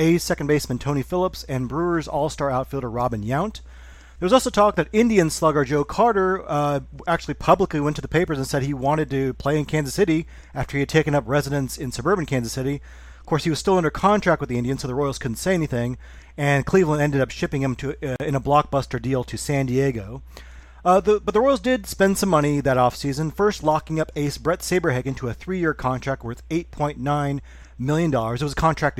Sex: male